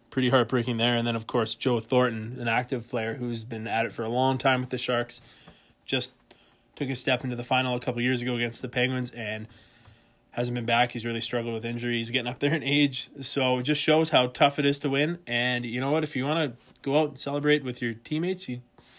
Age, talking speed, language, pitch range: 20-39, 250 wpm, English, 115-135 Hz